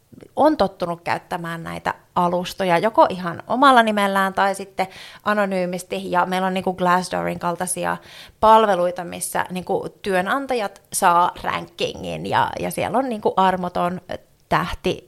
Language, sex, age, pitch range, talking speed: Finnish, female, 30-49, 180-215 Hz, 125 wpm